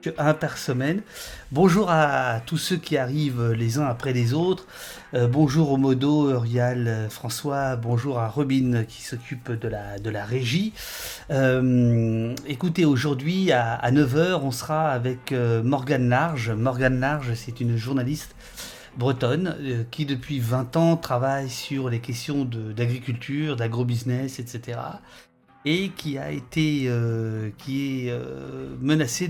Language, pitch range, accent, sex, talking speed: French, 120-145 Hz, French, male, 140 wpm